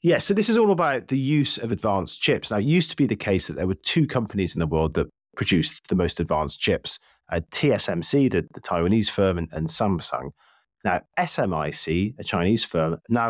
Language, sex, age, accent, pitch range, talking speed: English, male, 30-49, British, 85-115 Hz, 210 wpm